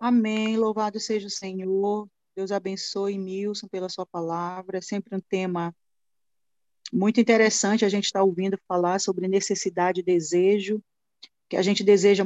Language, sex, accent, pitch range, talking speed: Portuguese, female, Brazilian, 195-235 Hz, 150 wpm